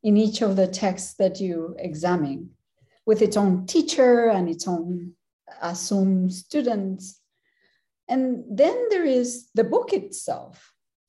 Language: English